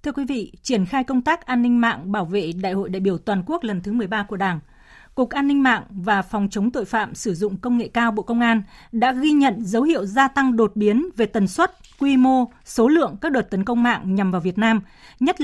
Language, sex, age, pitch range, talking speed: Vietnamese, female, 20-39, 205-255 Hz, 255 wpm